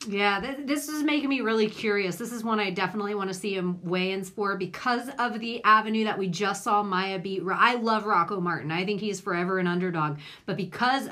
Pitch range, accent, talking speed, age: 170-215 Hz, American, 225 wpm, 40-59